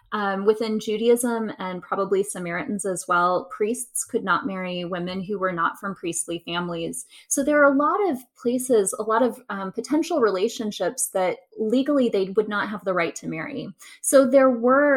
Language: English